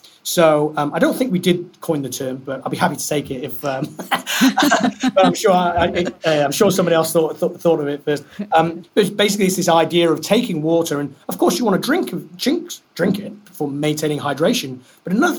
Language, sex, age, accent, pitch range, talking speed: English, male, 30-49, British, 145-180 Hz, 225 wpm